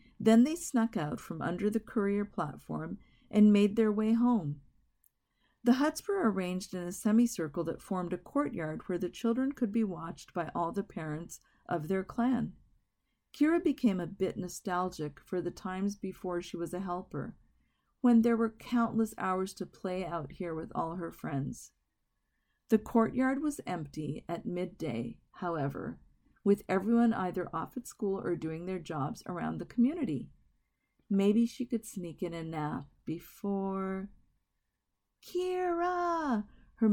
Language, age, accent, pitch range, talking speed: English, 50-69, American, 175-230 Hz, 155 wpm